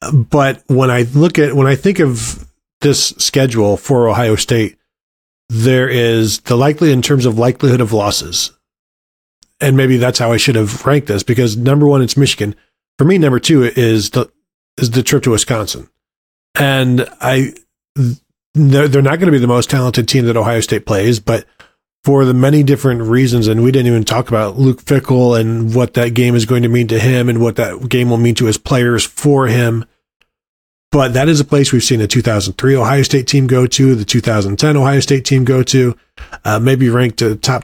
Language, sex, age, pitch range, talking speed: English, male, 40-59, 115-140 Hz, 200 wpm